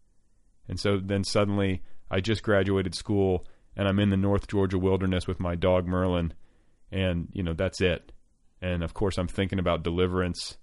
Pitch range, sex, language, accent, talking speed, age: 85-100 Hz, male, English, American, 175 wpm, 30-49